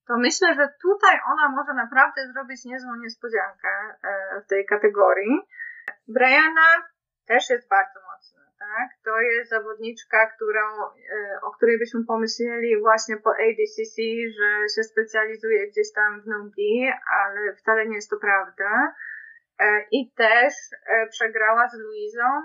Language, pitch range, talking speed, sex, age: Polish, 210-260 Hz, 130 wpm, female, 20-39